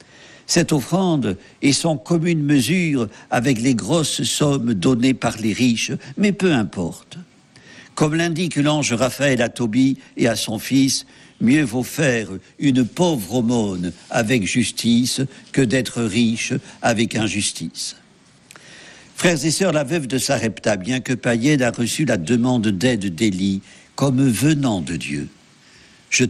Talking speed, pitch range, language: 140 wpm, 110-155 Hz, French